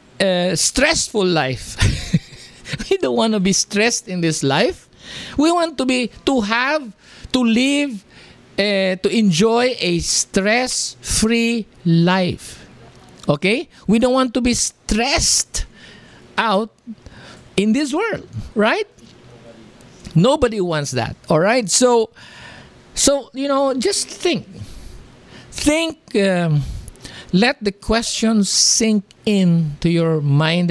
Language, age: English, 50-69